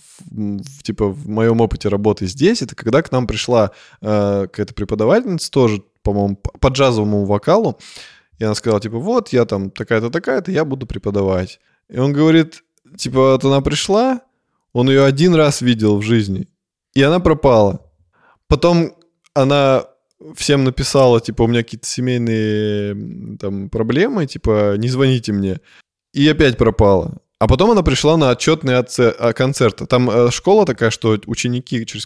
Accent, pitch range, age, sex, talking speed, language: native, 105-150 Hz, 20-39, male, 150 wpm, Russian